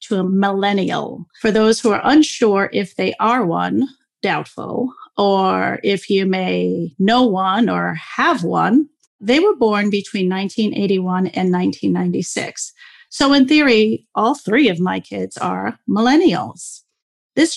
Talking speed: 135 wpm